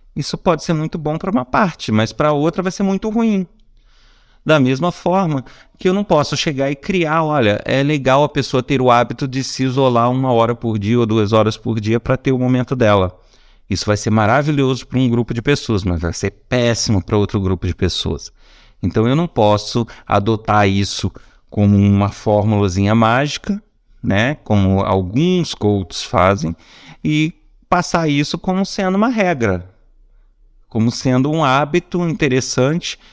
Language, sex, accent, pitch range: Portuguese, male, Brazilian, 110-155 Hz